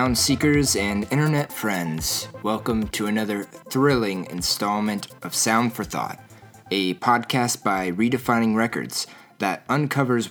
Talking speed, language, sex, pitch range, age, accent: 120 wpm, English, male, 105-130 Hz, 20-39, American